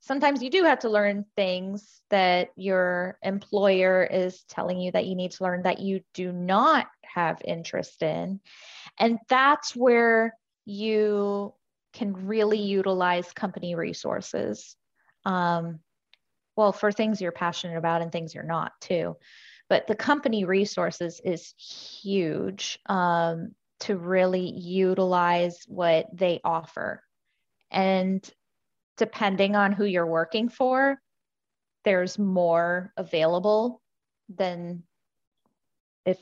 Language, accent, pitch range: English, American, 175-210 Hz